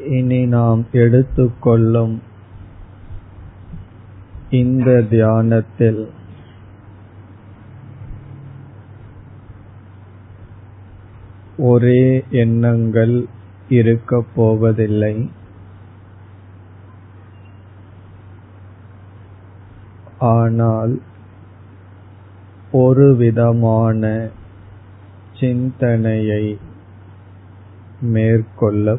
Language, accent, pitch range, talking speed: Tamil, native, 100-115 Hz, 30 wpm